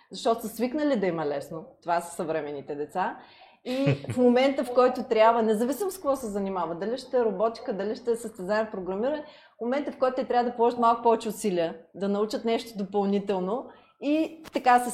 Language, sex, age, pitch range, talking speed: Bulgarian, female, 20-39, 200-245 Hz, 195 wpm